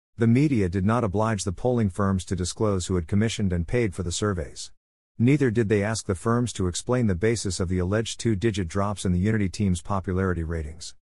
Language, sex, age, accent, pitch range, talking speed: English, male, 50-69, American, 90-110 Hz, 215 wpm